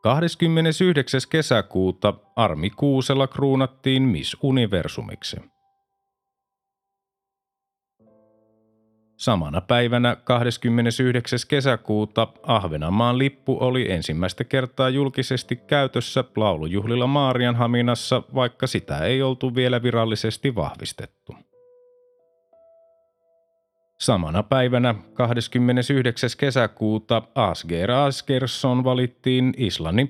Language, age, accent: Finnish, 30-49, native